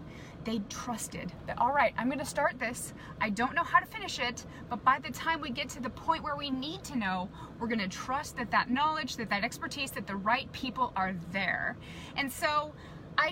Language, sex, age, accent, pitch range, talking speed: English, female, 20-39, American, 210-265 Hz, 215 wpm